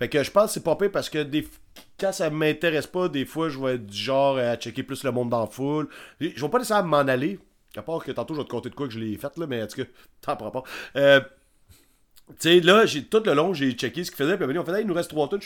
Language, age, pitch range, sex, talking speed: French, 40-59, 120-155 Hz, male, 315 wpm